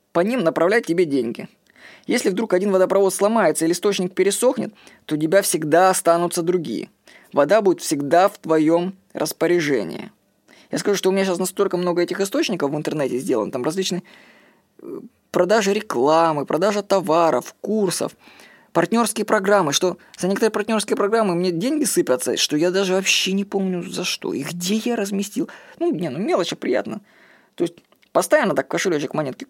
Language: Russian